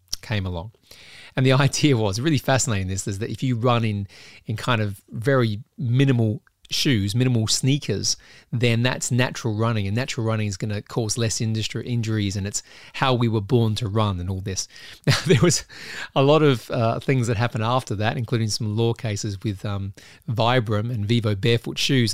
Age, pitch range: 30-49, 105-125 Hz